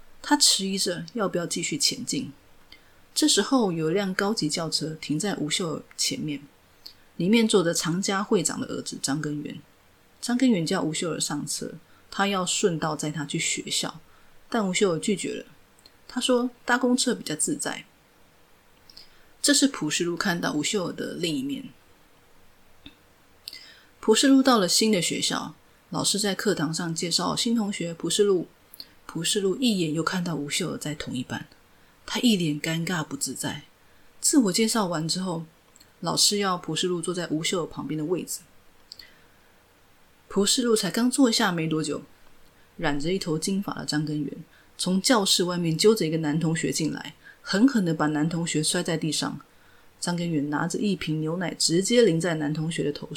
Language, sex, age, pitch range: Chinese, female, 30-49, 155-210 Hz